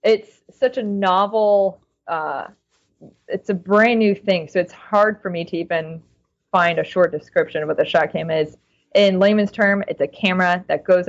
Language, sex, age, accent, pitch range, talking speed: English, female, 20-39, American, 170-200 Hz, 185 wpm